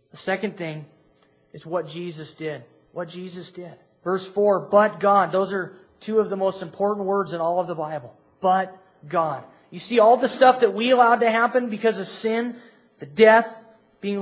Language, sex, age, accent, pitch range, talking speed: English, male, 30-49, American, 165-215 Hz, 190 wpm